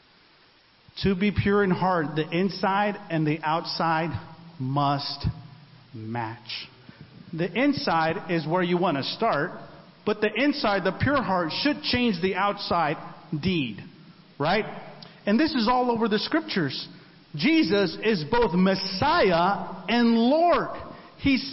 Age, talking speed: 50-69, 130 wpm